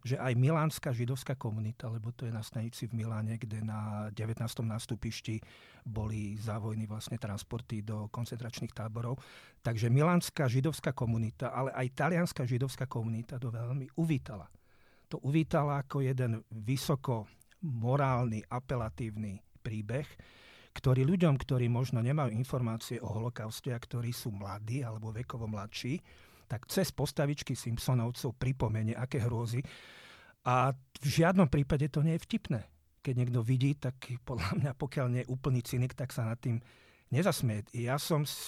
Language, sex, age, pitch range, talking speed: Slovak, male, 40-59, 115-135 Hz, 140 wpm